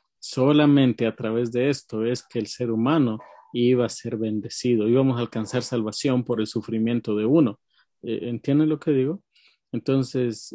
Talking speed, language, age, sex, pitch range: 160 wpm, Spanish, 40-59, male, 120-155 Hz